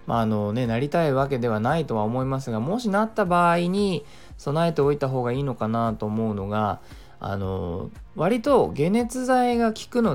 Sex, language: male, Japanese